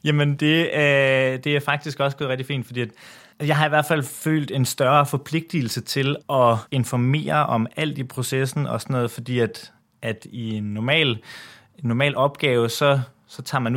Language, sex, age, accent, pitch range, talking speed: Danish, male, 20-39, native, 115-145 Hz, 180 wpm